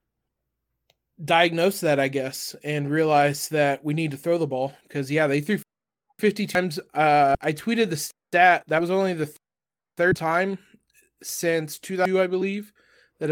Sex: male